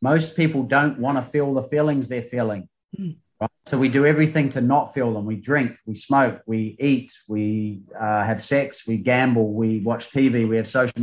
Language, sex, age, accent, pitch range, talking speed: English, male, 30-49, Australian, 120-150 Hz, 200 wpm